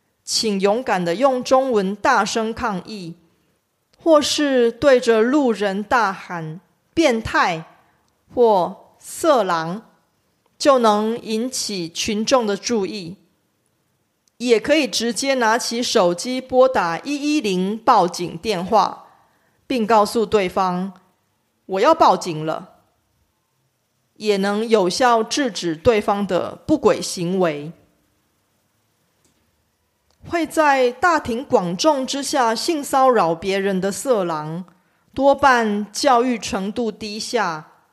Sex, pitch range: female, 180-255 Hz